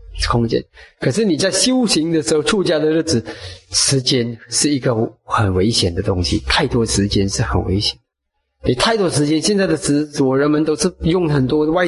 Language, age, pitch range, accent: Chinese, 30-49, 115-180 Hz, native